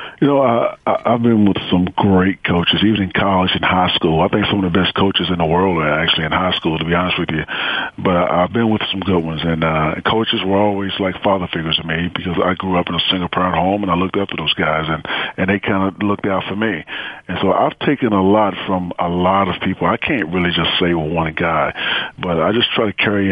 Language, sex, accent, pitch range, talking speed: English, male, American, 90-100 Hz, 255 wpm